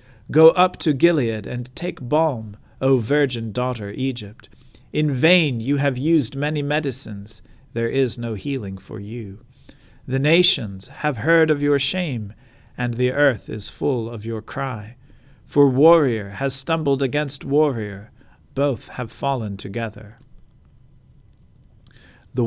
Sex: male